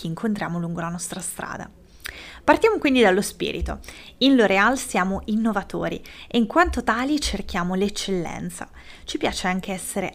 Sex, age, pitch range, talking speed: female, 20-39, 180-245 Hz, 135 wpm